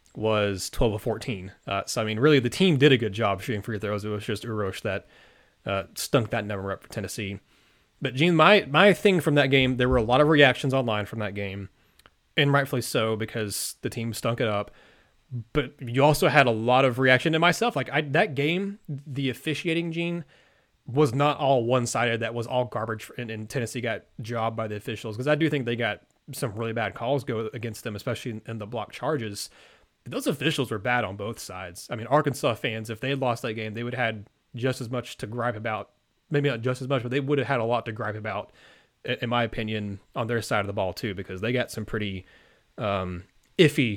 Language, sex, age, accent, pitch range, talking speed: English, male, 30-49, American, 110-140 Hz, 230 wpm